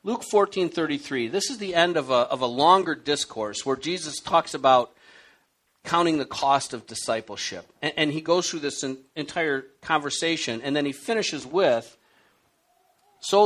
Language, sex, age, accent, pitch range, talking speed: English, male, 50-69, American, 140-215 Hz, 155 wpm